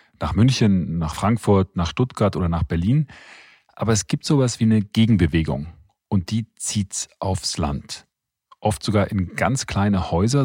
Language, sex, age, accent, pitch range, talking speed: German, male, 40-59, German, 95-115 Hz, 155 wpm